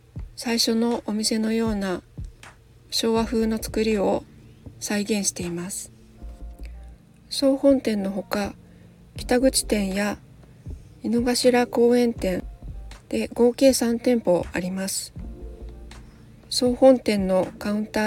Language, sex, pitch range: Japanese, female, 185-240 Hz